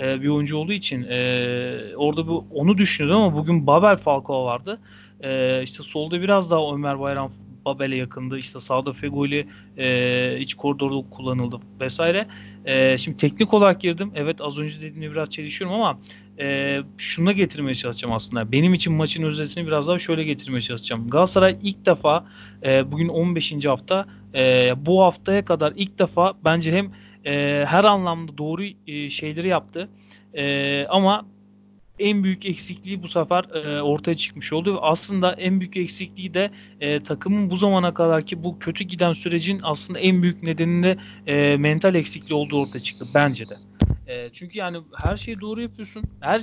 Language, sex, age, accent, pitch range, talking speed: Turkish, male, 40-59, native, 135-185 Hz, 160 wpm